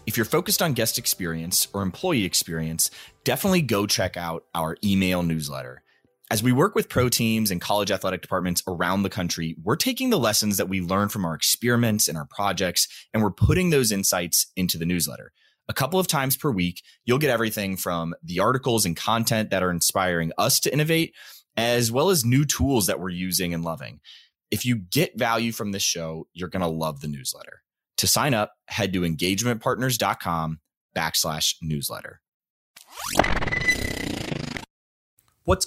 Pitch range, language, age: 85-115 Hz, English, 30-49